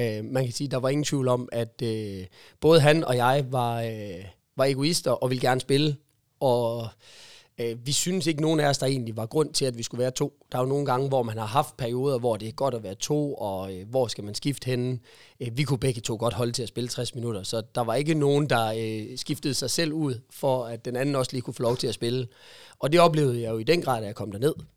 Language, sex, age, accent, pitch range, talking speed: Danish, male, 30-49, native, 115-145 Hz, 270 wpm